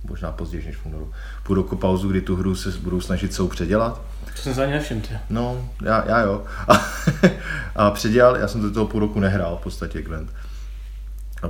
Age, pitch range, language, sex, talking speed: 20-39, 85-105 Hz, Czech, male, 200 wpm